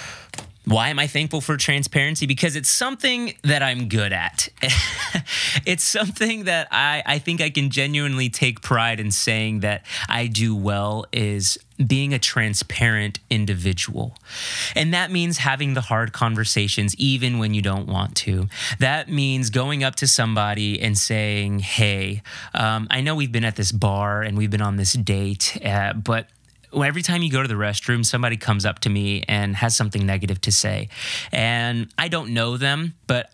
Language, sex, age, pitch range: English, male, 30-49, 110-150 Hz